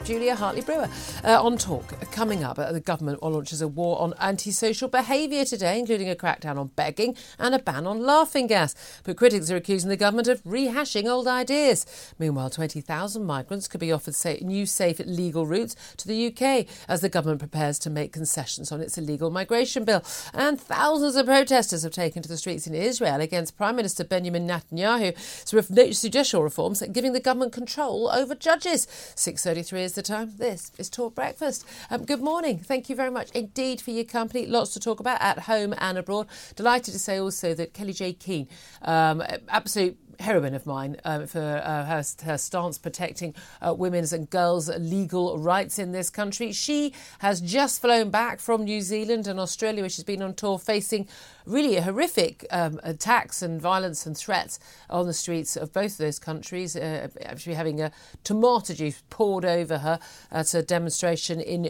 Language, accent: English, British